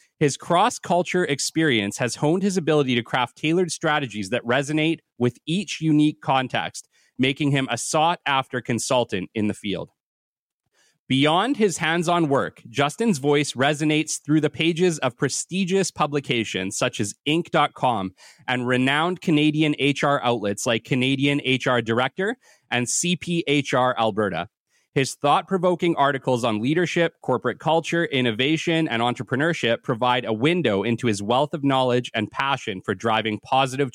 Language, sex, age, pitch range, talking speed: English, male, 30-49, 120-160 Hz, 135 wpm